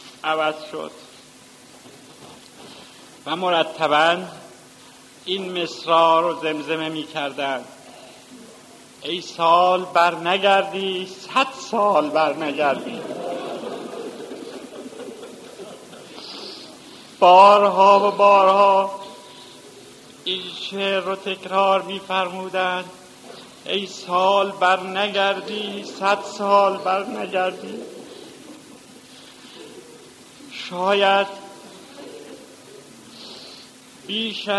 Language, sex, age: Persian, male, 50-69